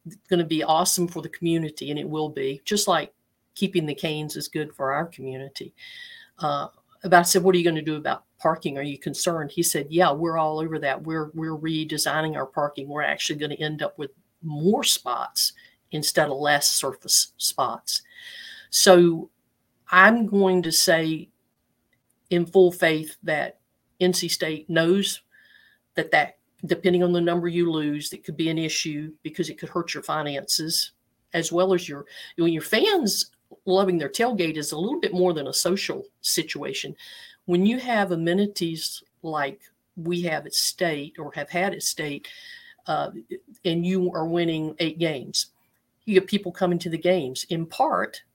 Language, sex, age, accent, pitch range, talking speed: English, female, 50-69, American, 155-185 Hz, 175 wpm